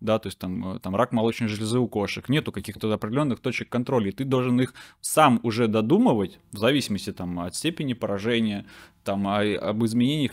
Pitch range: 105-130 Hz